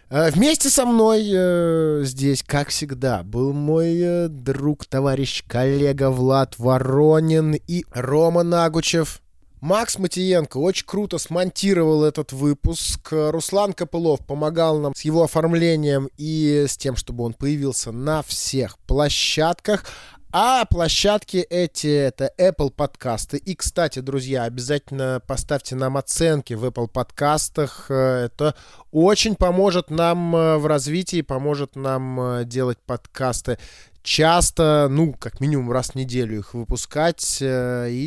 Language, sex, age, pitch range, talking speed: Russian, male, 20-39, 130-170 Hz, 120 wpm